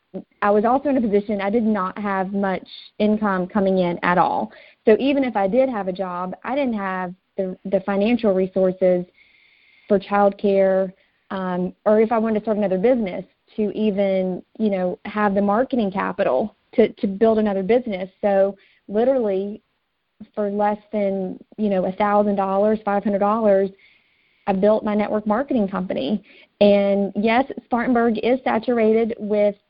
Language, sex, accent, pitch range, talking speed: English, female, American, 200-230 Hz, 165 wpm